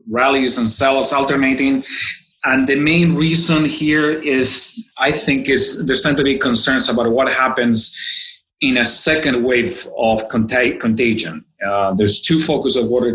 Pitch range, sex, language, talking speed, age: 115-160 Hz, male, English, 155 wpm, 30-49